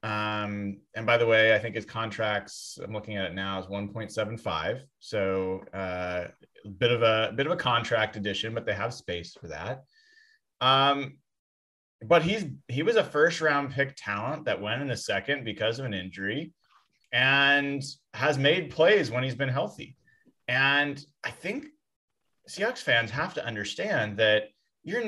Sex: male